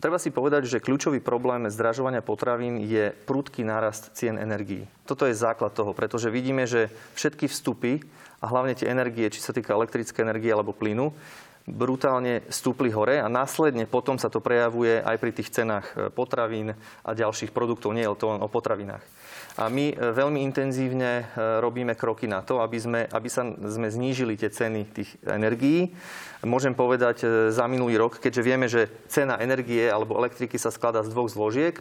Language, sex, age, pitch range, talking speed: Slovak, male, 30-49, 110-130 Hz, 175 wpm